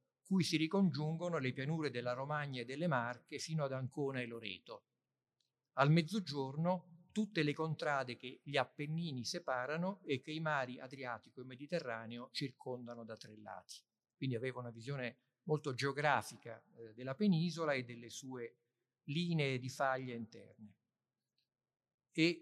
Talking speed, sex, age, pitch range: 135 wpm, male, 50-69, 125-160 Hz